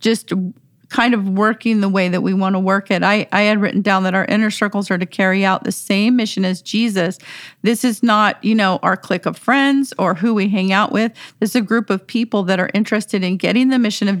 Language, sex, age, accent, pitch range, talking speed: English, female, 40-59, American, 190-225 Hz, 250 wpm